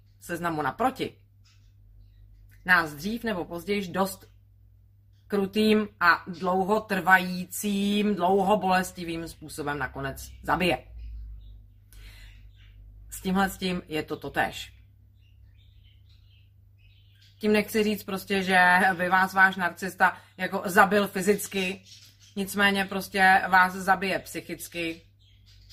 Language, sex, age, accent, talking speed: Czech, female, 30-49, native, 95 wpm